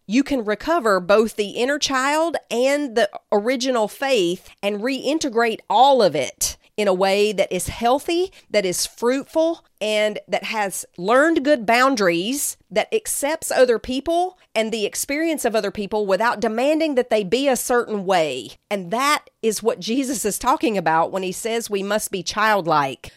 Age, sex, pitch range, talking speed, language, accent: 40-59, female, 195-265 Hz, 165 wpm, English, American